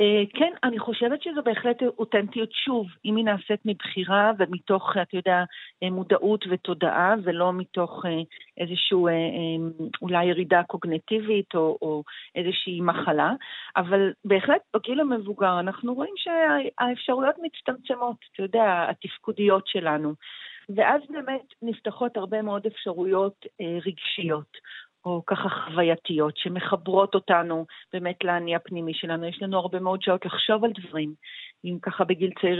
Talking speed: 120 wpm